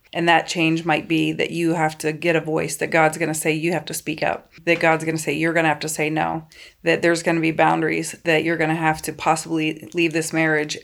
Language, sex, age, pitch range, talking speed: English, female, 30-49, 155-170 Hz, 275 wpm